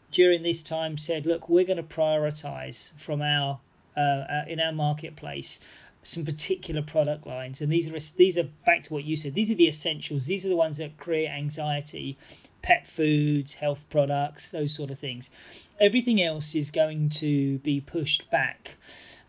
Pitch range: 150-190 Hz